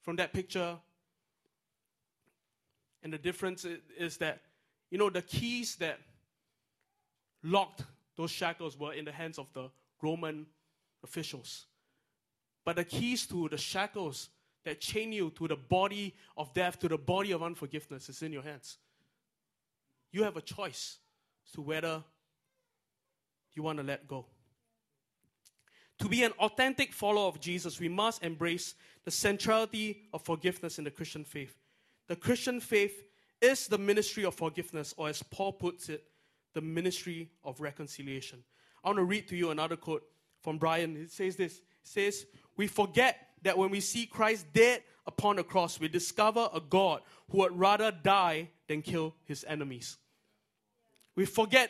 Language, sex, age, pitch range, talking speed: English, male, 20-39, 155-195 Hz, 155 wpm